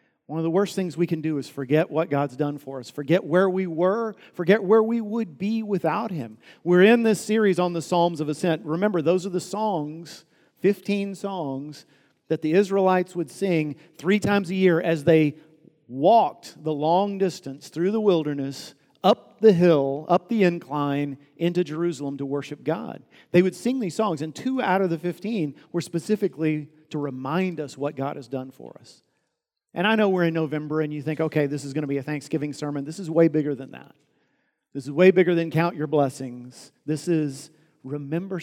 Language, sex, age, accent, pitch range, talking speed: English, male, 50-69, American, 150-190 Hz, 200 wpm